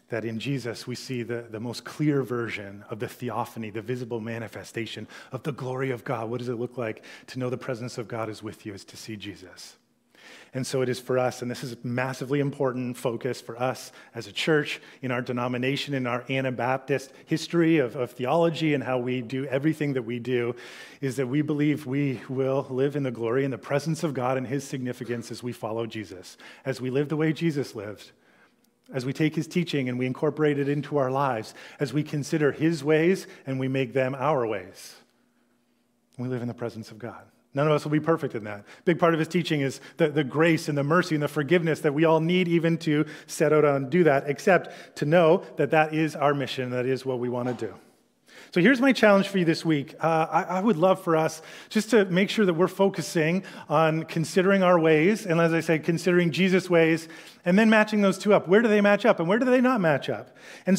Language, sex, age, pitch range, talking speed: English, male, 30-49, 125-170 Hz, 230 wpm